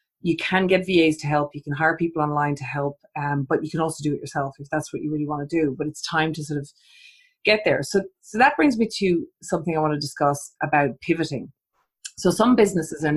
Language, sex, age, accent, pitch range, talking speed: English, female, 30-49, Irish, 145-180 Hz, 245 wpm